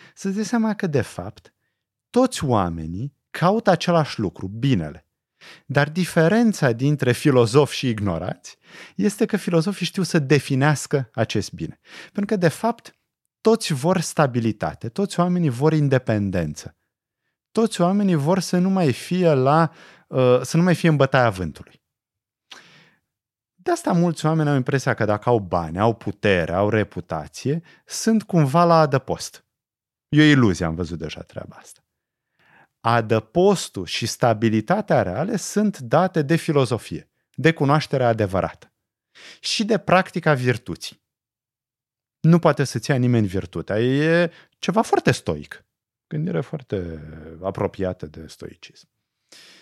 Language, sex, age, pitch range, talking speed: Romanian, male, 30-49, 115-175 Hz, 130 wpm